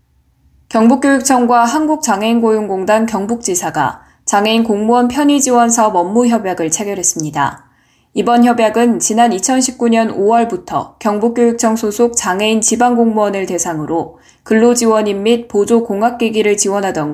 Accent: native